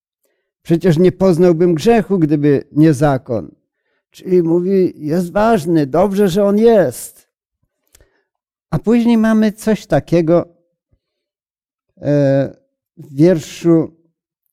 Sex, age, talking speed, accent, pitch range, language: male, 50-69, 90 wpm, native, 145-180 Hz, Polish